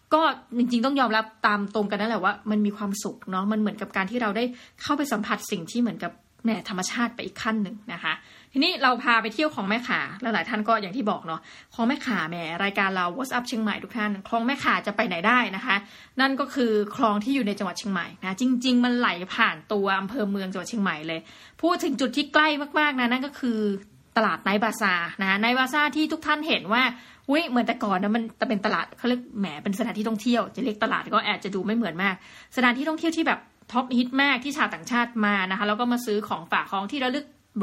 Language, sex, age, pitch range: Thai, female, 20-39, 205-250 Hz